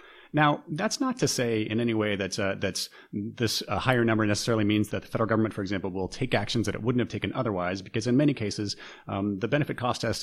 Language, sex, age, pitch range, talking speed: English, male, 30-49, 95-120 Hz, 240 wpm